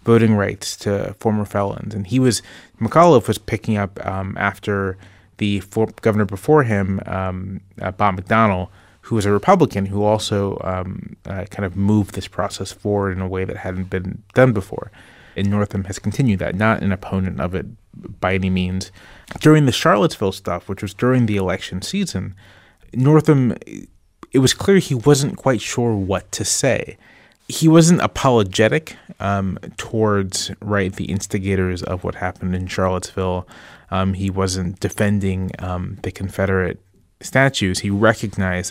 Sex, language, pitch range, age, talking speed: male, English, 95-110 Hz, 30-49, 155 wpm